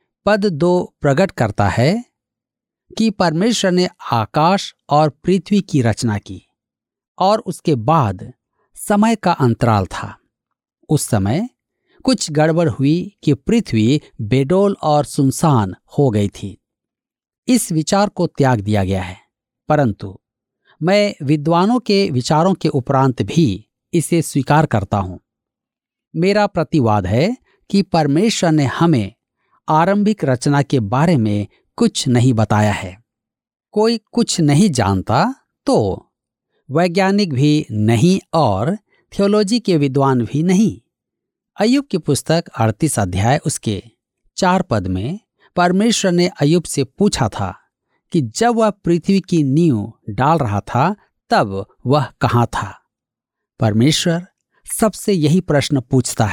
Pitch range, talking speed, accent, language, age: 120-190 Hz, 125 wpm, native, Hindi, 50-69